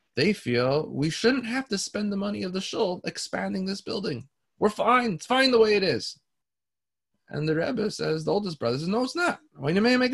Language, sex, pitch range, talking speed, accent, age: English, male, 120-185 Hz, 230 wpm, American, 30-49